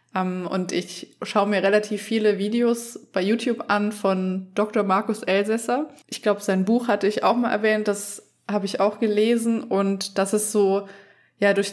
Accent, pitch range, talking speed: German, 190-210 Hz, 175 wpm